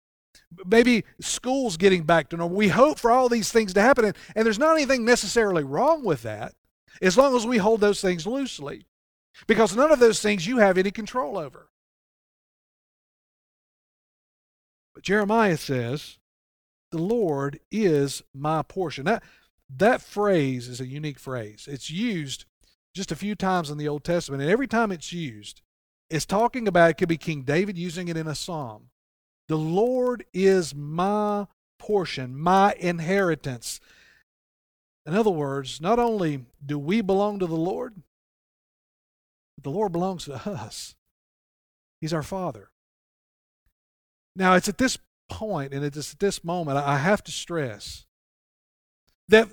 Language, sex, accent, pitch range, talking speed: English, male, American, 145-215 Hz, 150 wpm